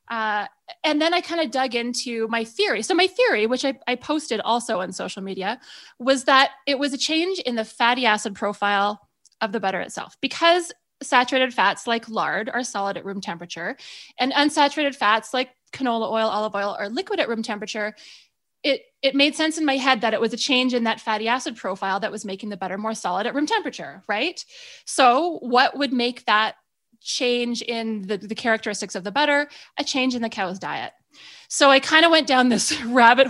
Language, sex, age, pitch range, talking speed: English, female, 20-39, 215-280 Hz, 205 wpm